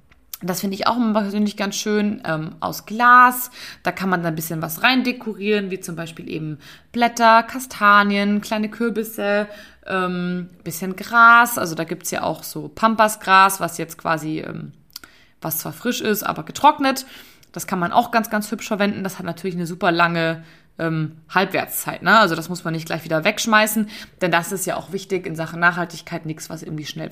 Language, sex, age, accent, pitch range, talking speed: German, female, 20-39, German, 170-230 Hz, 190 wpm